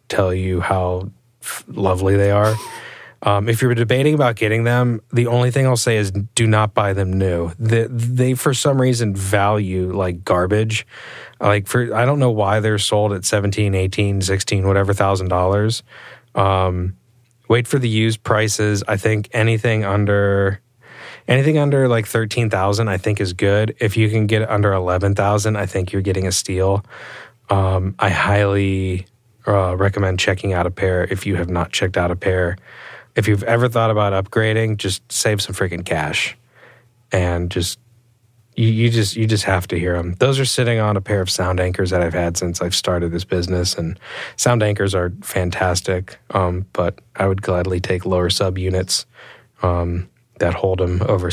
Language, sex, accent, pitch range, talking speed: English, male, American, 95-115 Hz, 180 wpm